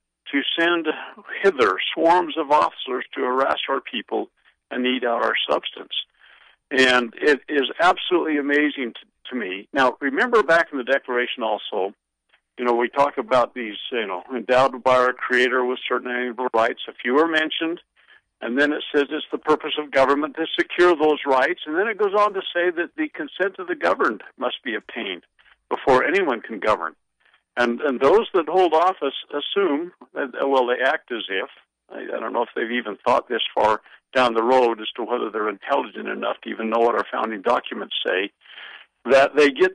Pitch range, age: 125-160 Hz, 60-79